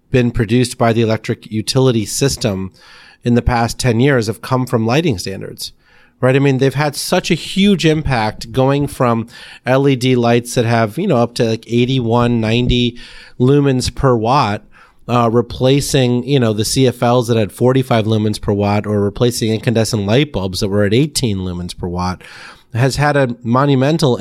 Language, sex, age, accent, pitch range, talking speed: English, male, 30-49, American, 110-130 Hz, 175 wpm